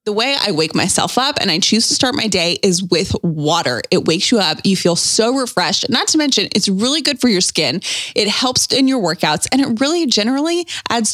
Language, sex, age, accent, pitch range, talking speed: English, female, 20-39, American, 175-240 Hz, 230 wpm